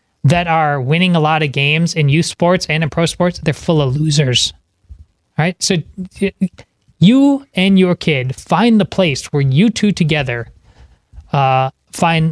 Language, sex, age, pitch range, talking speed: English, male, 30-49, 150-190 Hz, 165 wpm